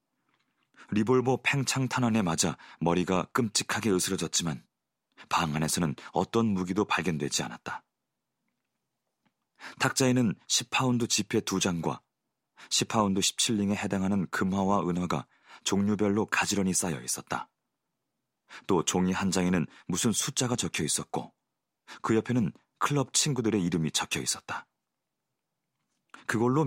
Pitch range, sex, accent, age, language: 95-125 Hz, male, native, 40-59, Korean